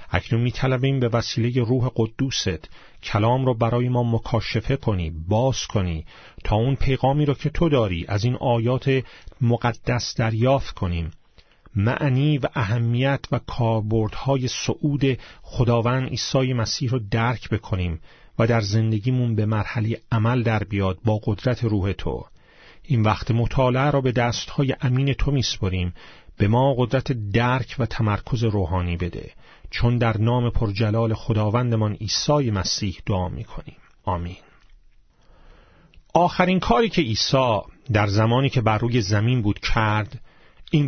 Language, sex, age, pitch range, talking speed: Persian, male, 40-59, 110-130 Hz, 135 wpm